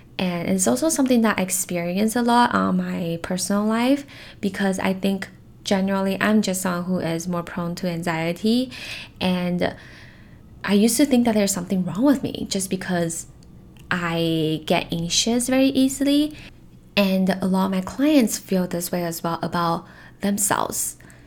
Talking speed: 160 wpm